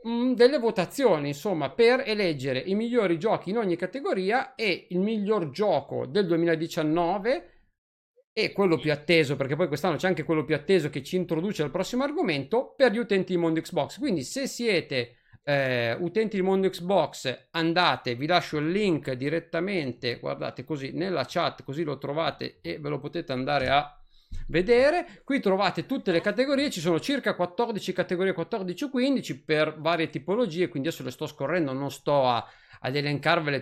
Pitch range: 155-215 Hz